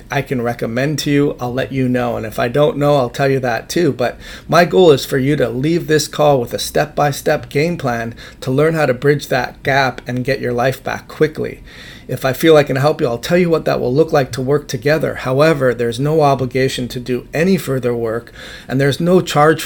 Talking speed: 240 wpm